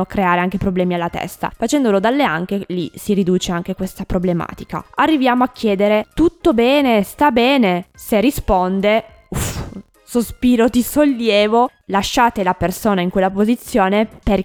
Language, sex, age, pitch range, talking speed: Italian, female, 20-39, 190-245 Hz, 135 wpm